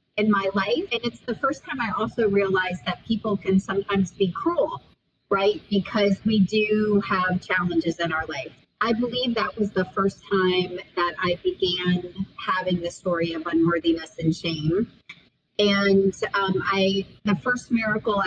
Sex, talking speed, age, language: female, 160 wpm, 30-49, English